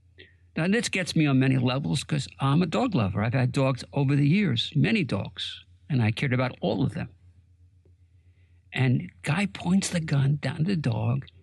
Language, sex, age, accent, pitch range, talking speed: English, male, 60-79, American, 95-140 Hz, 190 wpm